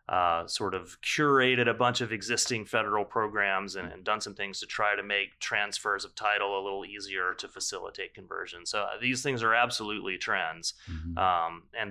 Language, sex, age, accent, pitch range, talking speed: English, male, 30-49, American, 95-120 Hz, 180 wpm